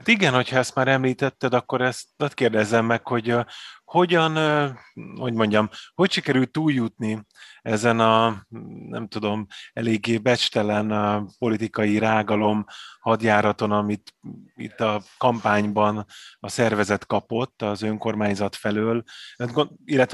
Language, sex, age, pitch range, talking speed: Hungarian, male, 30-49, 100-120 Hz, 120 wpm